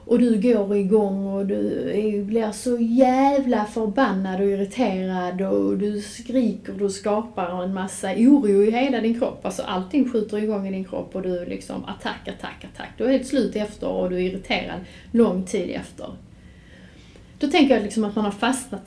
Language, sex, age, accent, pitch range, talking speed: Swedish, female, 30-49, native, 195-255 Hz, 185 wpm